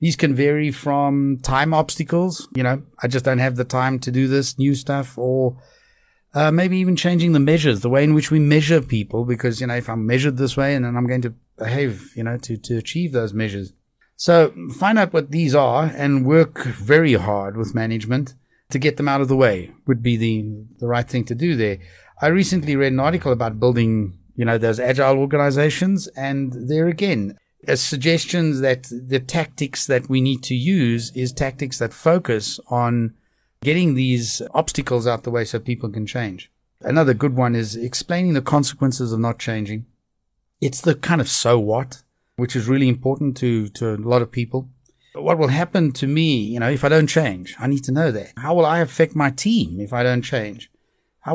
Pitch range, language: 120-155 Hz, English